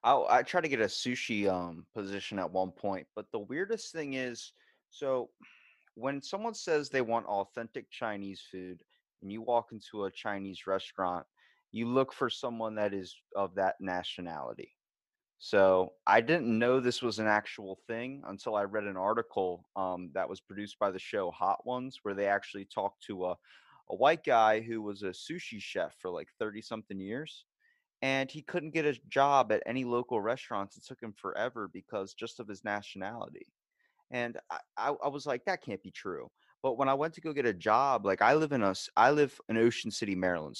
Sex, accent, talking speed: male, American, 190 wpm